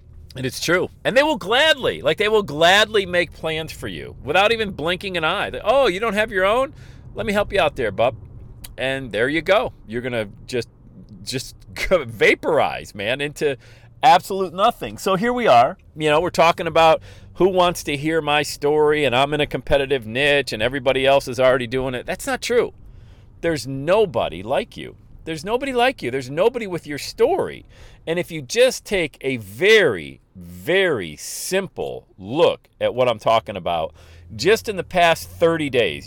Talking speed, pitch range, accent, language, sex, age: 185 wpm, 120-180 Hz, American, English, male, 40-59